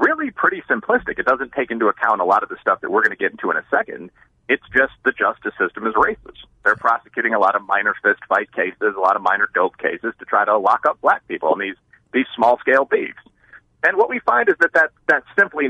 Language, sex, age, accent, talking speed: English, male, 40-59, American, 250 wpm